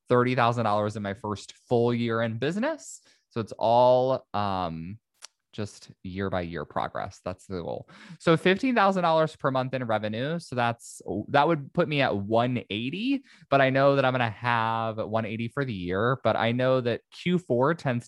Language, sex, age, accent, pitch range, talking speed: English, male, 20-39, American, 105-135 Hz, 175 wpm